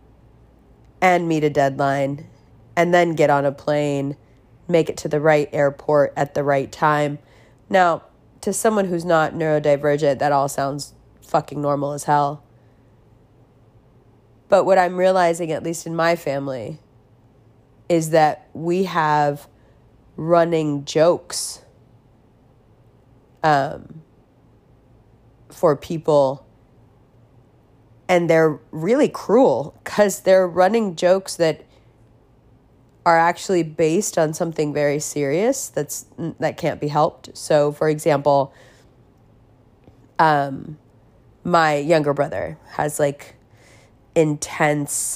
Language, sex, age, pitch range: English, female, 30-49, 130-165 Hz